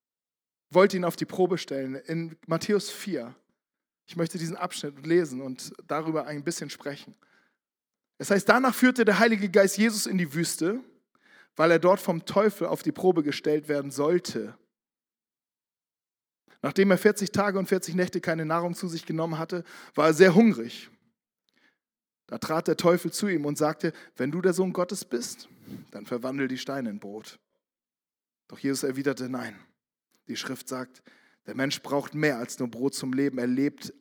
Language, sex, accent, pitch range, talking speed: German, male, German, 140-185 Hz, 170 wpm